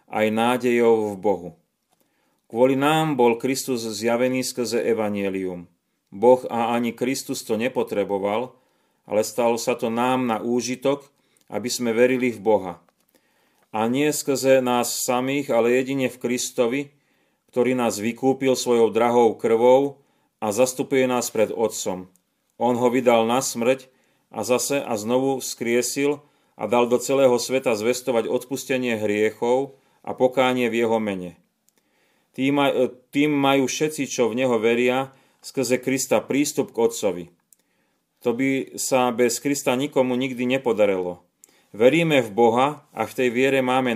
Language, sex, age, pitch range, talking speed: Slovak, male, 30-49, 115-135 Hz, 135 wpm